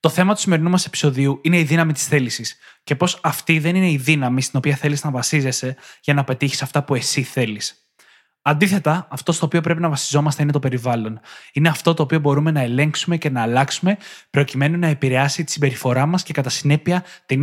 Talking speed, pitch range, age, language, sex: 205 wpm, 140-165 Hz, 20-39, Greek, male